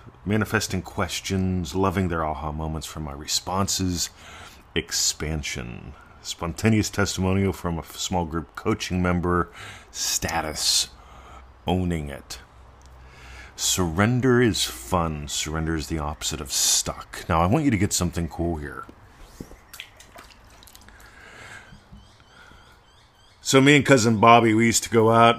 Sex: male